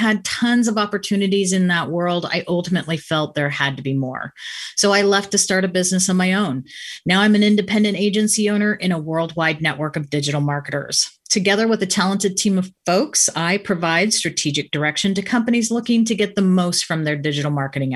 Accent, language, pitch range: American, English, 165-210 Hz